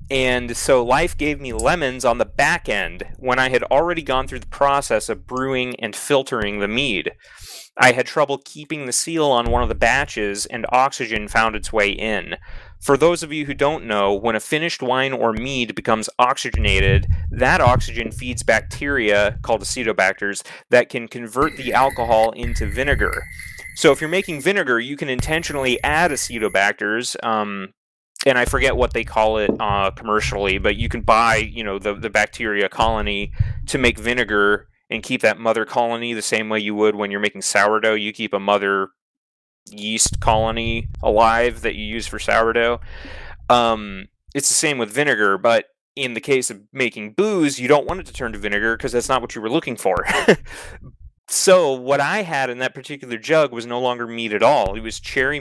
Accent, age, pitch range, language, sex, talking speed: American, 30-49, 110-135 Hz, English, male, 190 wpm